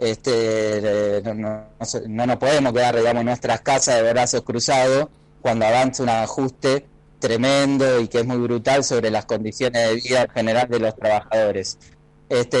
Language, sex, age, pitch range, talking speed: Spanish, male, 30-49, 115-140 Hz, 145 wpm